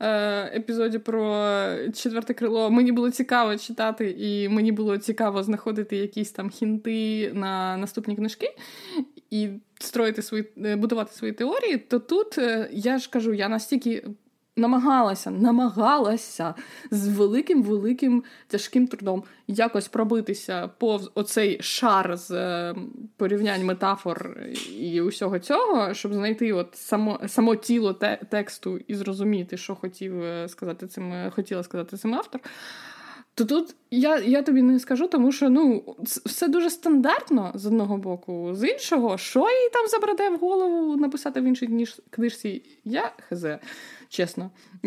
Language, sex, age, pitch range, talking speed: Ukrainian, female, 20-39, 205-255 Hz, 130 wpm